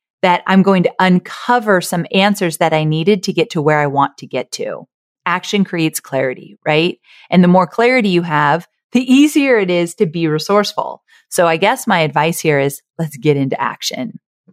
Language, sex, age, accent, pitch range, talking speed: English, female, 30-49, American, 155-210 Hz, 195 wpm